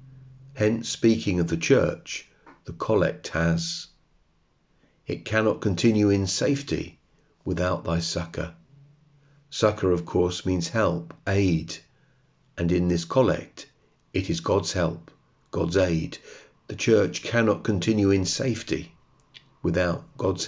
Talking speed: 115 wpm